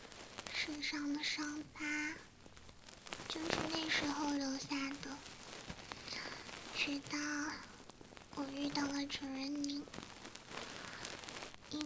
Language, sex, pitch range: Chinese, male, 280-310 Hz